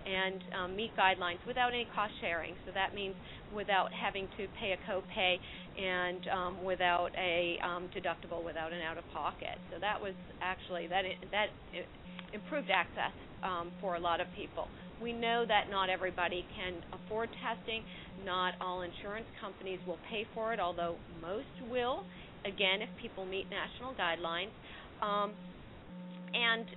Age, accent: 40-59, American